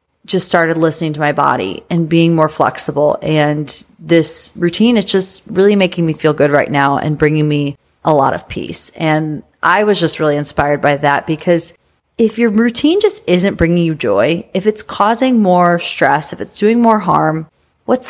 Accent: American